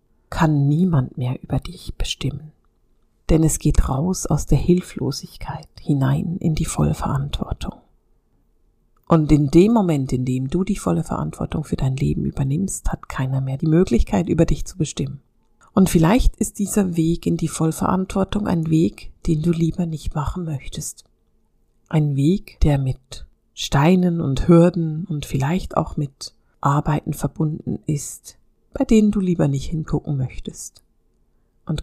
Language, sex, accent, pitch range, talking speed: German, female, German, 145-175 Hz, 145 wpm